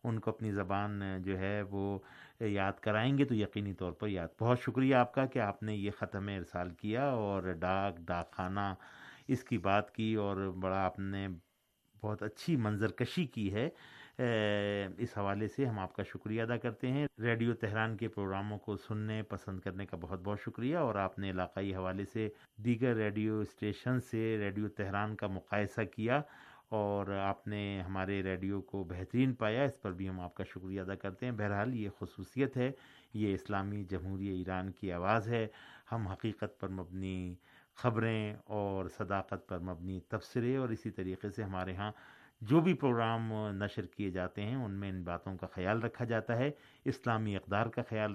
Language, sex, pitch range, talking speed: Urdu, male, 95-115 Hz, 180 wpm